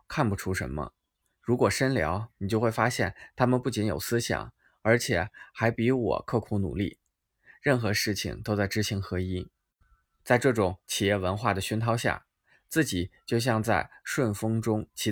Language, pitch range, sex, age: Chinese, 95-120 Hz, male, 20-39